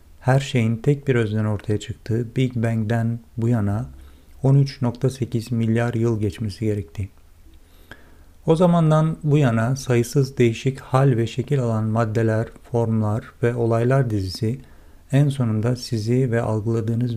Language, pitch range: Turkish, 105-130 Hz